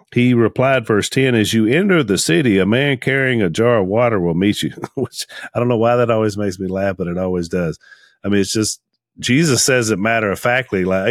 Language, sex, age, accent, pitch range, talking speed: English, male, 40-59, American, 95-125 Hz, 240 wpm